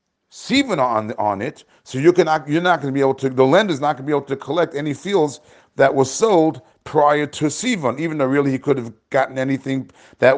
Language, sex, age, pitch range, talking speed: English, male, 40-59, 125-160 Hz, 230 wpm